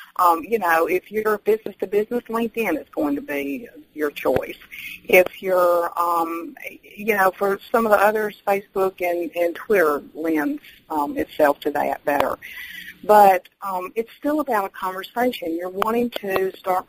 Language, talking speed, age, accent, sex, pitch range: English, 155 wpm, 50-69, American, female, 165-205 Hz